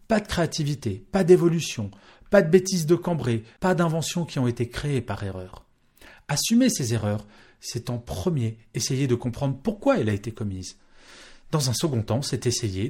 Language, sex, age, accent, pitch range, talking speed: French, male, 40-59, French, 110-165 Hz, 175 wpm